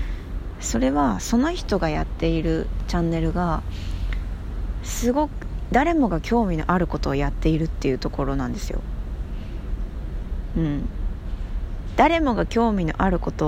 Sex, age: female, 20-39